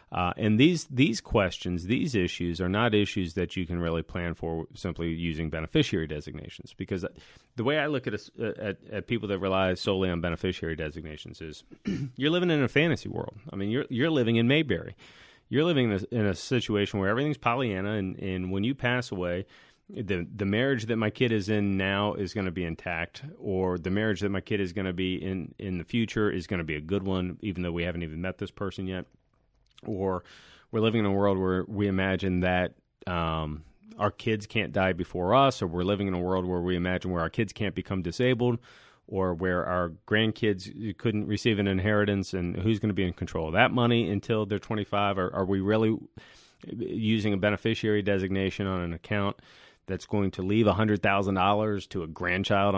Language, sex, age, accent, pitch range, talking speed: English, male, 30-49, American, 90-110 Hz, 205 wpm